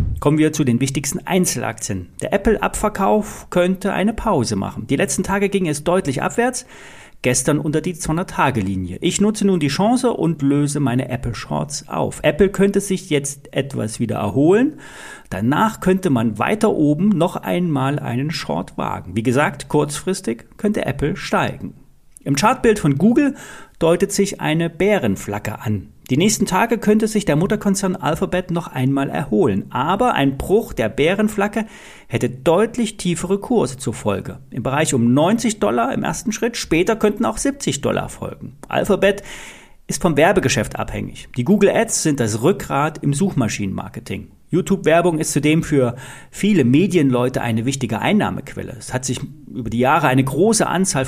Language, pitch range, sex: German, 130-195 Hz, male